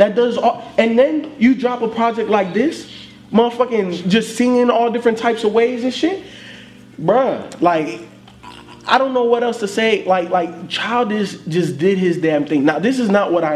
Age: 20-39